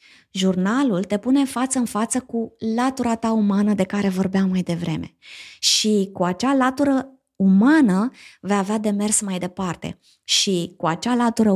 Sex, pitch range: female, 195-260 Hz